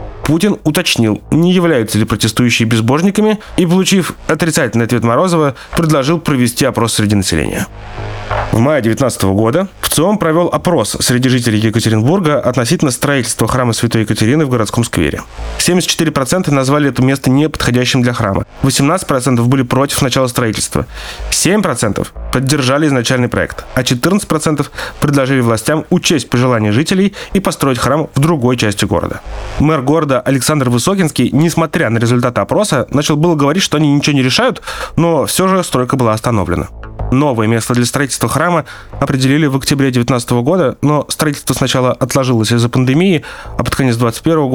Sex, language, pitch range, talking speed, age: male, Russian, 115-155 Hz, 145 wpm, 30-49